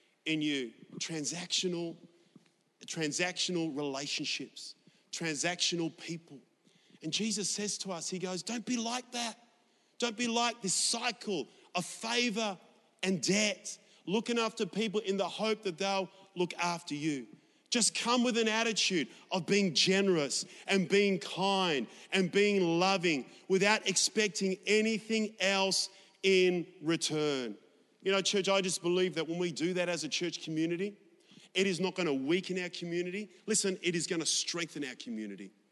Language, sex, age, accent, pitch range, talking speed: English, male, 40-59, Australian, 170-200 Hz, 150 wpm